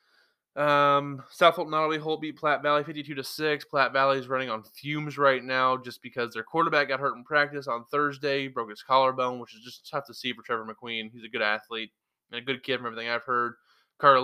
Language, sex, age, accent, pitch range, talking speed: English, male, 20-39, American, 120-145 Hz, 230 wpm